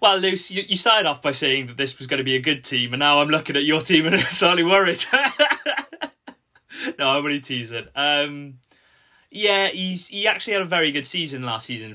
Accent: British